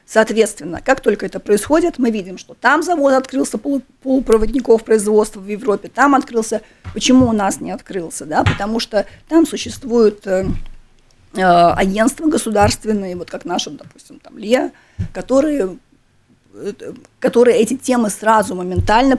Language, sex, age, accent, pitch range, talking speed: Russian, female, 30-49, native, 195-235 Hz, 125 wpm